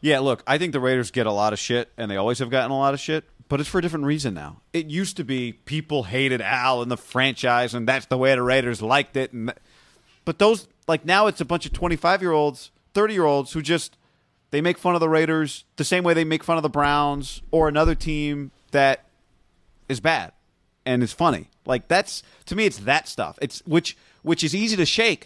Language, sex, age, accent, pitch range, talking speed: English, male, 30-49, American, 120-165 Hz, 230 wpm